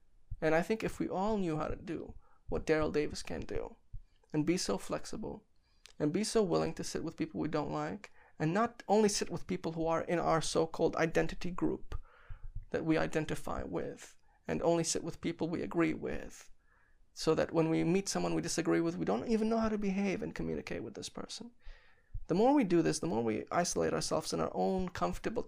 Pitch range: 150-185 Hz